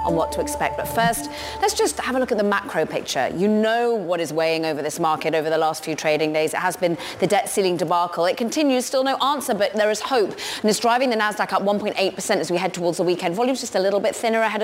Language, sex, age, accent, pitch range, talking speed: English, female, 30-49, British, 170-215 Hz, 265 wpm